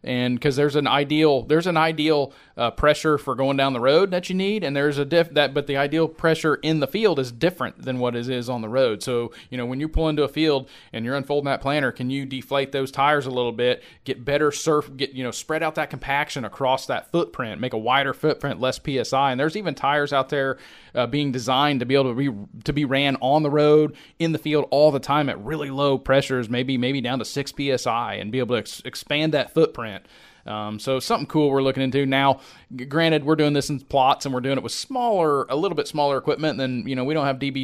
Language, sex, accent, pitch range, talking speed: English, male, American, 130-150 Hz, 250 wpm